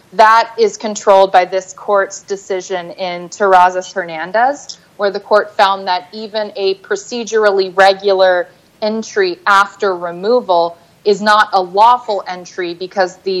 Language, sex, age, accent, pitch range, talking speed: English, female, 30-49, American, 180-210 Hz, 130 wpm